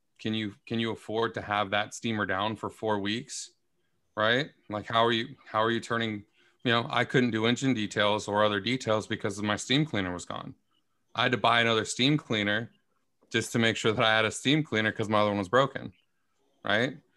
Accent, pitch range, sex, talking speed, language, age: American, 110-130 Hz, male, 220 wpm, English, 20-39